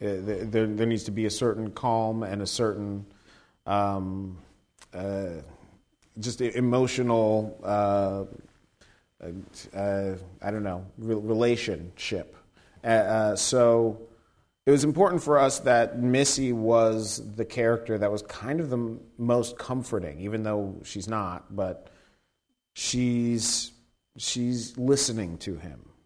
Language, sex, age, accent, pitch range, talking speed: English, male, 30-49, American, 100-120 Hz, 115 wpm